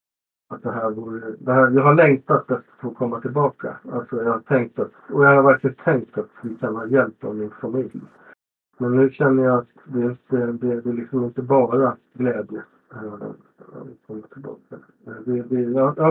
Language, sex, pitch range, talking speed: Swedish, male, 120-140 Hz, 185 wpm